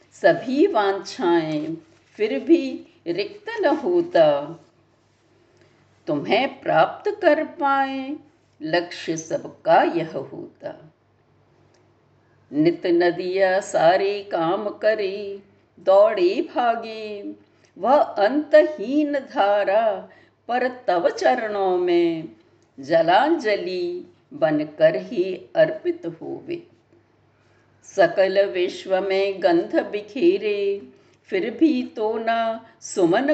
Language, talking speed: Hindi, 80 wpm